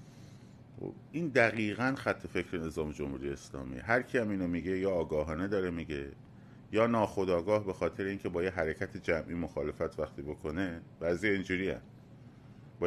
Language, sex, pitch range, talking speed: Persian, male, 80-95 Hz, 145 wpm